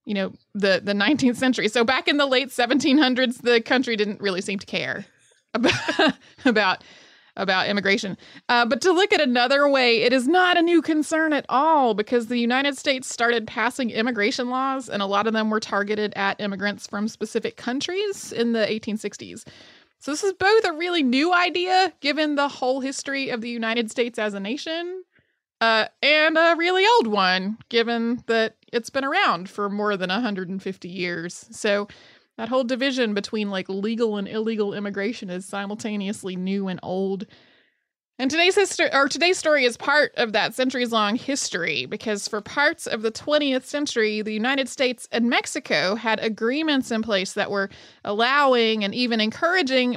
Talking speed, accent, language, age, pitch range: 175 wpm, American, English, 30-49, 205-275 Hz